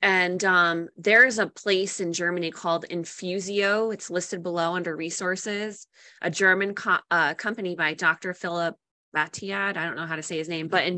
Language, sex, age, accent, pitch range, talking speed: English, female, 20-39, American, 175-215 Hz, 180 wpm